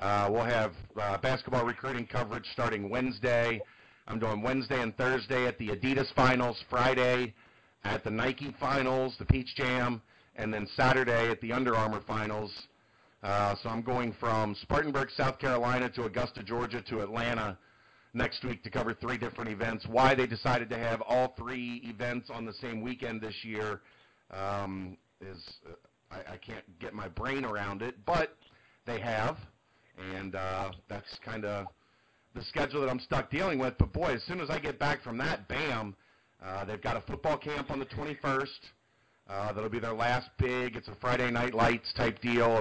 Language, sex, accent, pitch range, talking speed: English, male, American, 105-130 Hz, 180 wpm